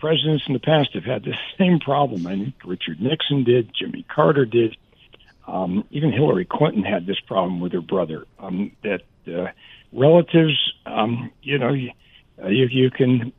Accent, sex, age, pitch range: American, male, 60-79, 120-155 Hz